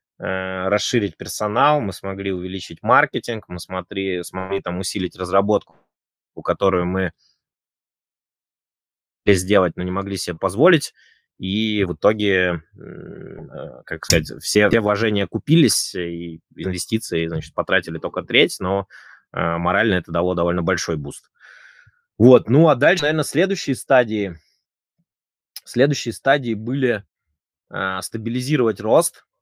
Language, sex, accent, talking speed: Russian, male, native, 110 wpm